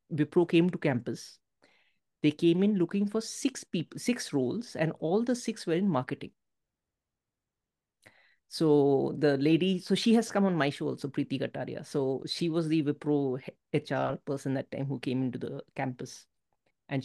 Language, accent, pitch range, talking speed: English, Indian, 140-185 Hz, 170 wpm